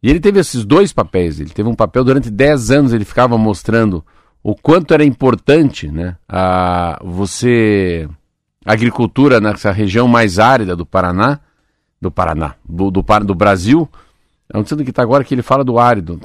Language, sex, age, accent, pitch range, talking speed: Portuguese, male, 50-69, Brazilian, 95-135 Hz, 175 wpm